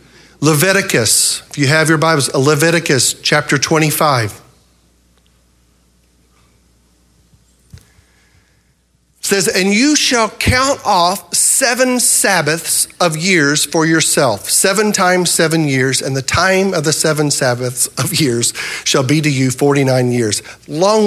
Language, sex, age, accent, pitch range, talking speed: English, male, 50-69, American, 120-190 Hz, 120 wpm